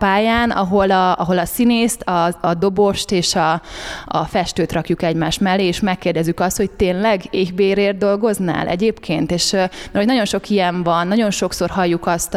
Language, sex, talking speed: Hungarian, female, 160 wpm